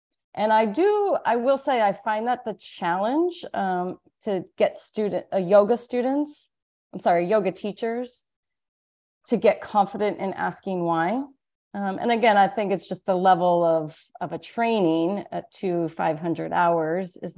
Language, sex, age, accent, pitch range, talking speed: English, female, 30-49, American, 175-230 Hz, 155 wpm